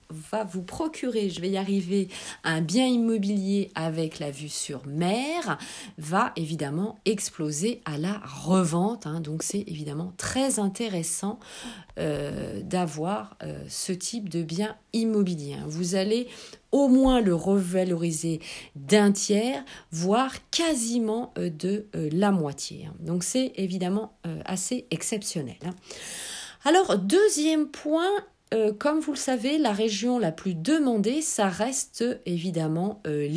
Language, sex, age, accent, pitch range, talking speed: French, female, 40-59, French, 170-225 Hz, 120 wpm